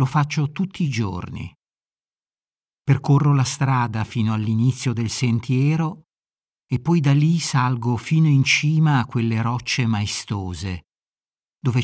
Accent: native